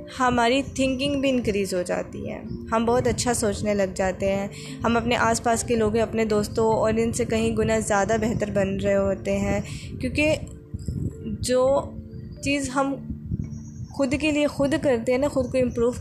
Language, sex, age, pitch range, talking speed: Urdu, female, 20-39, 210-240 Hz, 175 wpm